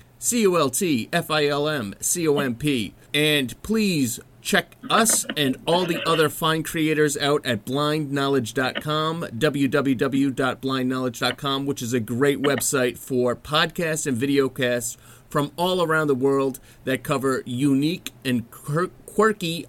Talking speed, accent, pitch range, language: 105 wpm, American, 120-150 Hz, English